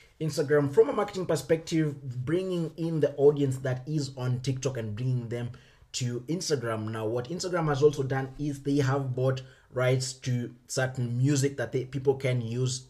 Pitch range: 125-150 Hz